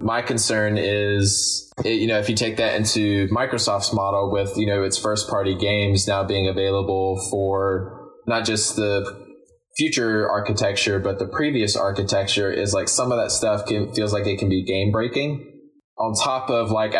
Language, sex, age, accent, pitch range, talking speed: English, male, 20-39, American, 100-110 Hz, 175 wpm